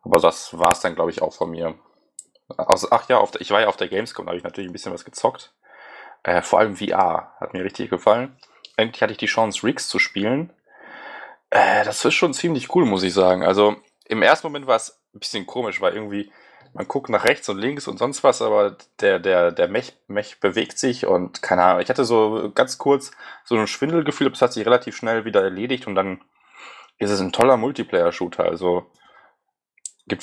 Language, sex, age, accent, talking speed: German, male, 20-39, German, 220 wpm